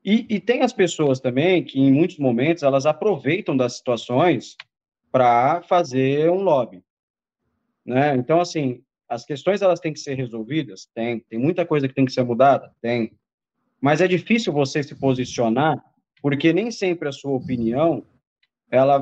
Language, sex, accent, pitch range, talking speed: Portuguese, male, Brazilian, 130-170 Hz, 160 wpm